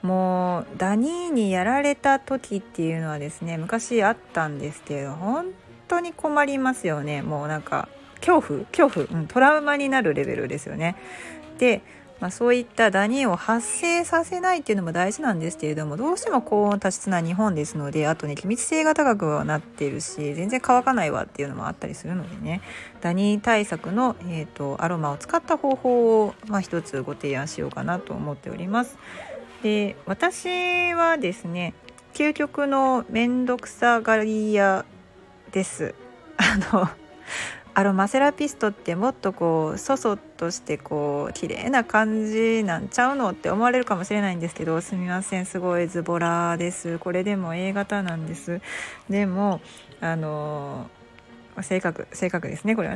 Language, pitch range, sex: Japanese, 170-250 Hz, female